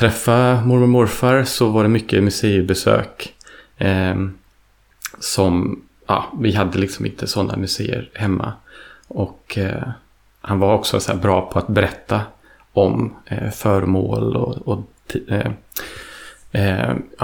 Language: Swedish